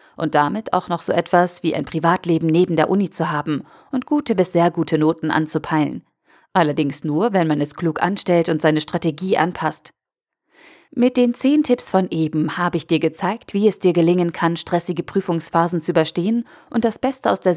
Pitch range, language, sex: 160-210 Hz, German, female